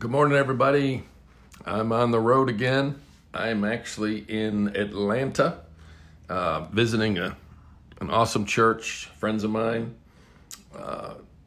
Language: English